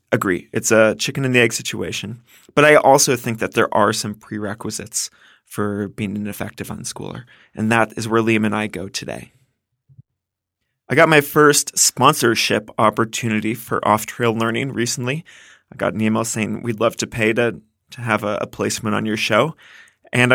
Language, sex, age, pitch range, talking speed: English, male, 30-49, 110-135 Hz, 175 wpm